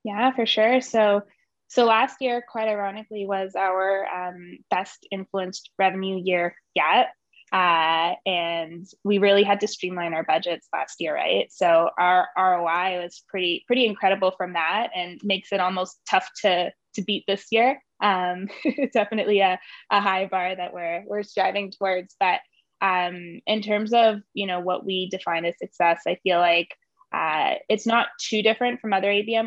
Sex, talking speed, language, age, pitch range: female, 170 wpm, English, 20-39, 175-210 Hz